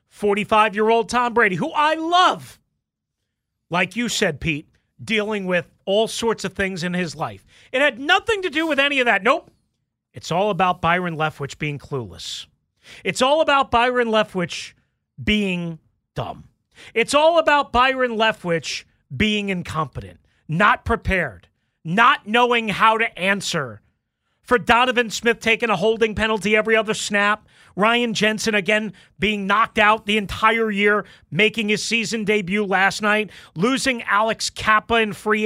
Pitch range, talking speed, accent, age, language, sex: 185-245 Hz, 145 wpm, American, 40-59, English, male